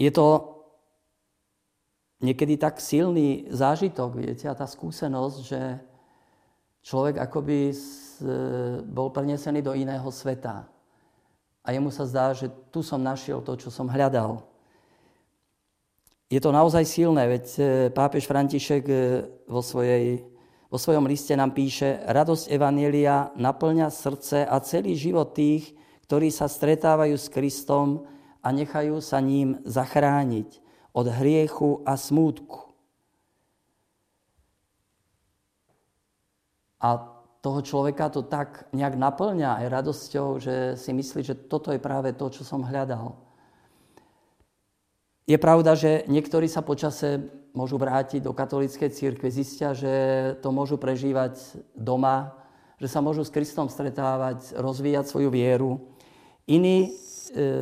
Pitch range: 130-150 Hz